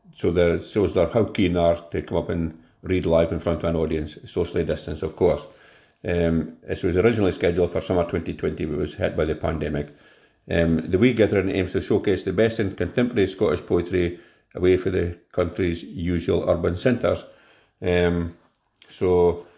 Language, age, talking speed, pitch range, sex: English, 50-69, 185 wpm, 85-95 Hz, male